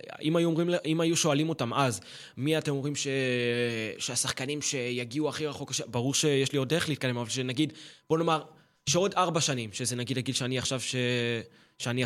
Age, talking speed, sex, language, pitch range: 20-39, 180 wpm, male, Hebrew, 130-155 Hz